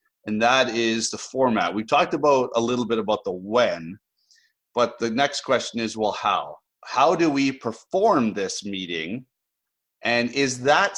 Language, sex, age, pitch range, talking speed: English, male, 30-49, 105-145 Hz, 165 wpm